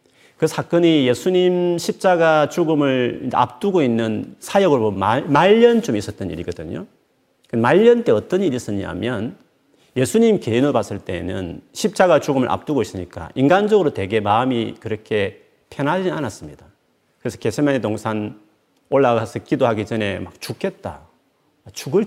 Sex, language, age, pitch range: male, Korean, 40-59, 115-180 Hz